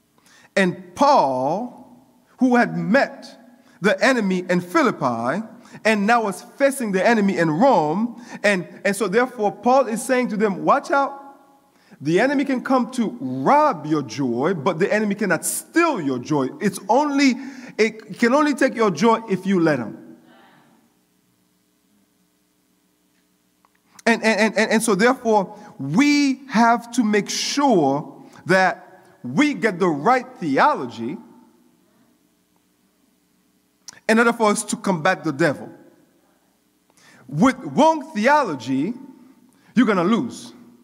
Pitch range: 180-260 Hz